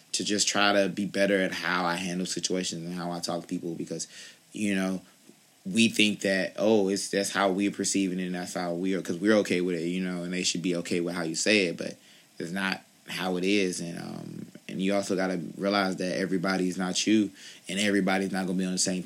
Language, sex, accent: English, male, American